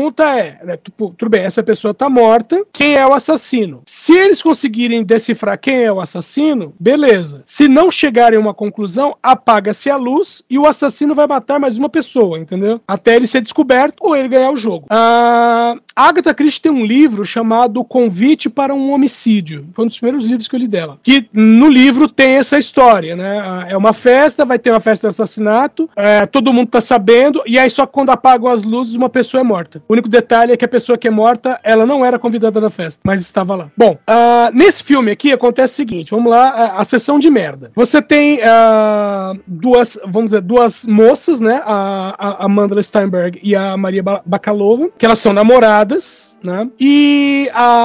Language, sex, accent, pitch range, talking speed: Portuguese, male, Brazilian, 210-270 Hz, 200 wpm